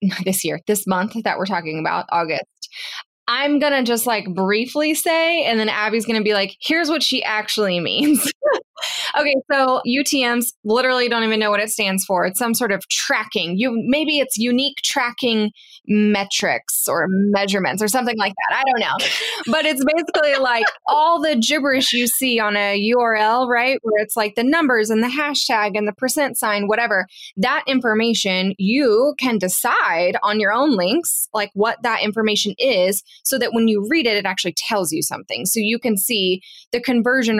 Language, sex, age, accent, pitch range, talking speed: English, female, 20-39, American, 200-260 Hz, 185 wpm